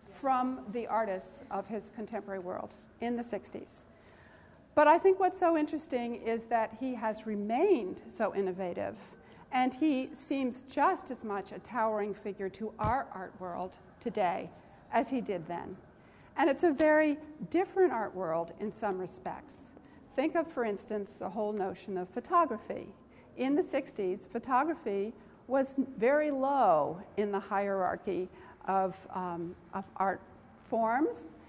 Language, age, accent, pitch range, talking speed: English, 50-69, American, 195-270 Hz, 145 wpm